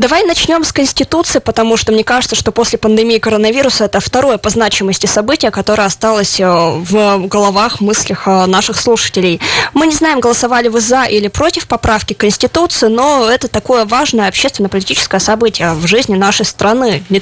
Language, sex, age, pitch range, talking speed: Russian, female, 20-39, 205-250 Hz, 155 wpm